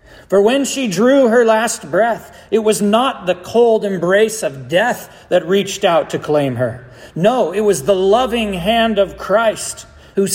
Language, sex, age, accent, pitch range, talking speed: English, male, 40-59, American, 135-215 Hz, 175 wpm